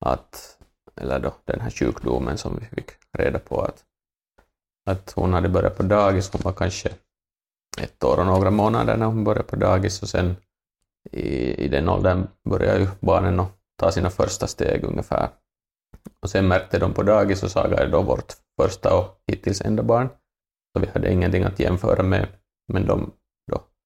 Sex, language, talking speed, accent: male, Finnish, 180 wpm, native